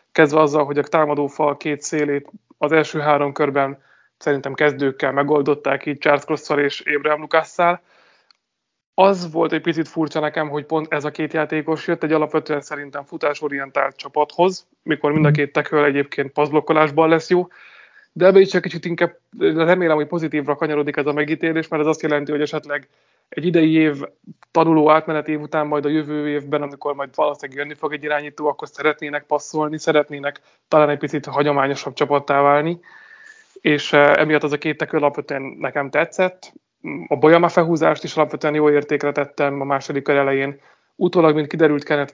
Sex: male